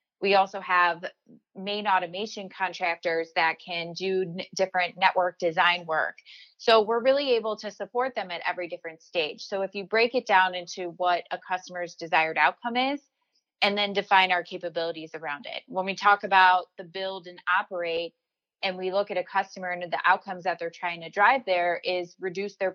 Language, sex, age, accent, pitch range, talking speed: English, female, 20-39, American, 170-195 Hz, 185 wpm